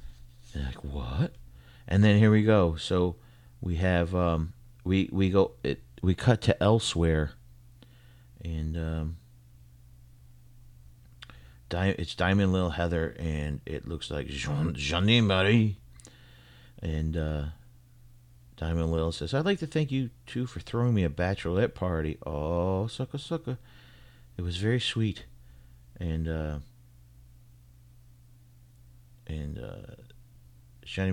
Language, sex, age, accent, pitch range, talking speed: English, male, 40-59, American, 75-115 Hz, 120 wpm